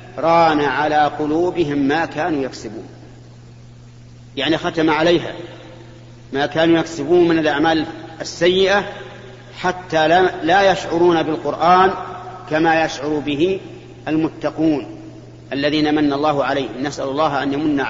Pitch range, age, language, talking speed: 125-170 Hz, 40-59, Arabic, 105 wpm